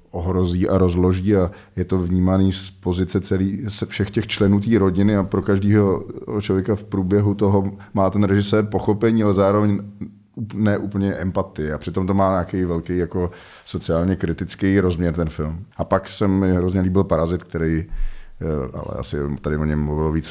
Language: Czech